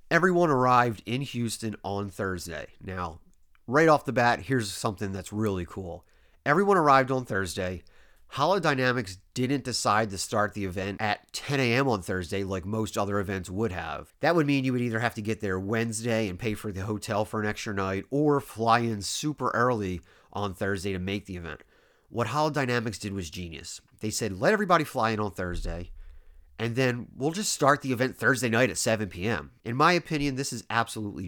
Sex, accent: male, American